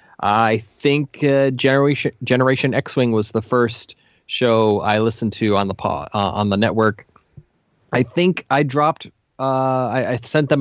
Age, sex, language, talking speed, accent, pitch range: 20-39, male, English, 170 wpm, American, 120-160 Hz